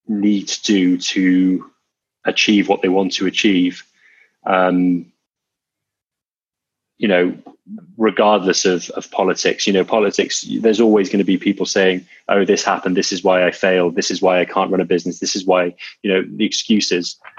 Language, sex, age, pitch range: English, male, 20-39, 90-105 Hz